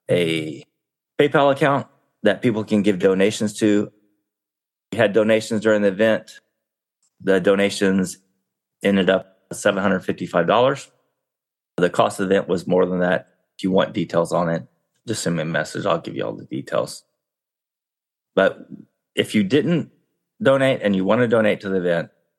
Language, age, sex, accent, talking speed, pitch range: English, 30-49, male, American, 160 wpm, 95-105 Hz